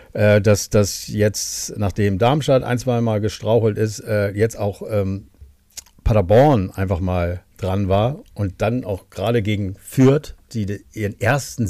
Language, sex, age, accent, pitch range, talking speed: German, male, 50-69, German, 95-115 Hz, 140 wpm